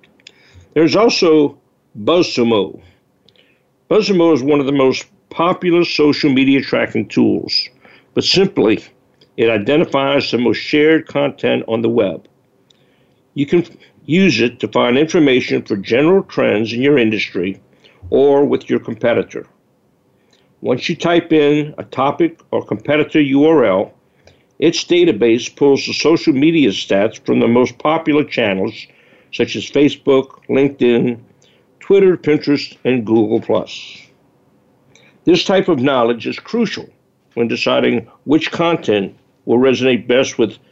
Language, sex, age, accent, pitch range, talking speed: English, male, 60-79, American, 125-165 Hz, 125 wpm